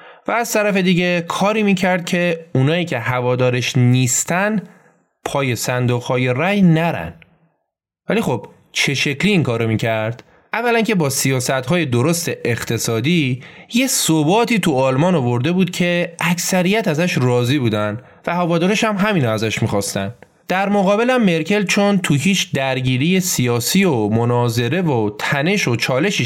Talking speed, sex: 135 wpm, male